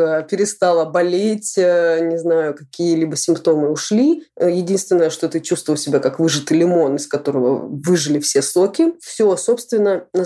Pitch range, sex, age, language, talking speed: 160-205 Hz, female, 20-39, Russian, 135 wpm